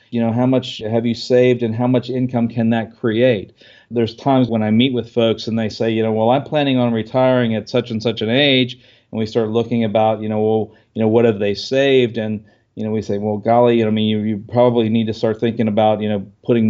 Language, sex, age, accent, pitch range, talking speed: English, male, 40-59, American, 105-120 Hz, 260 wpm